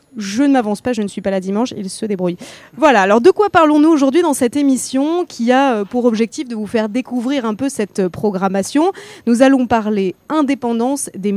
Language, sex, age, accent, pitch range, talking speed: French, female, 20-39, French, 205-270 Hz, 205 wpm